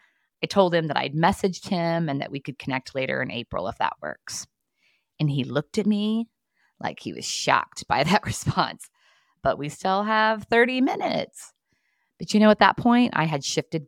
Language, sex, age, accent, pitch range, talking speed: English, female, 20-39, American, 135-200 Hz, 195 wpm